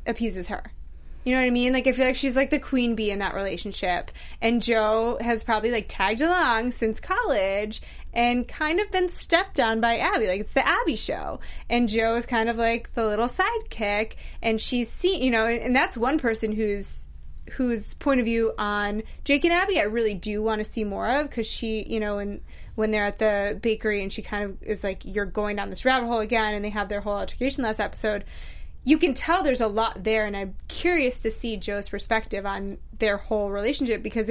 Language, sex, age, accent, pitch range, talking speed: English, female, 20-39, American, 210-260 Hz, 225 wpm